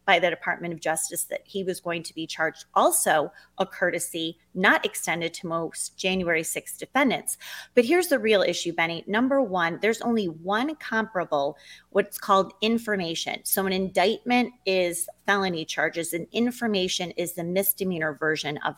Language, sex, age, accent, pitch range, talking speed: English, female, 30-49, American, 175-230 Hz, 160 wpm